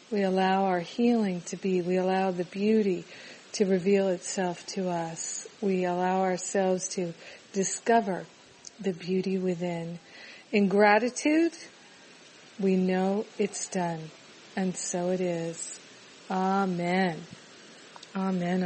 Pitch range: 185-215 Hz